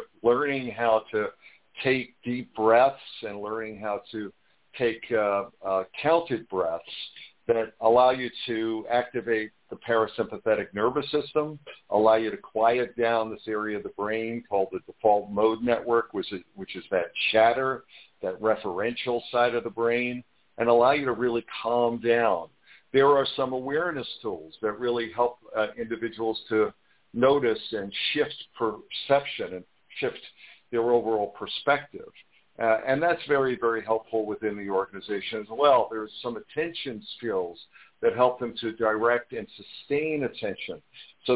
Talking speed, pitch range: 150 wpm, 105-125 Hz